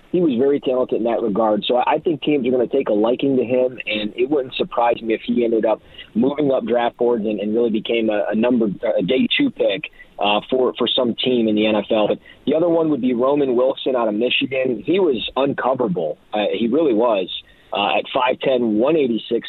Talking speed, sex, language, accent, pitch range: 225 wpm, male, English, American, 115-140 Hz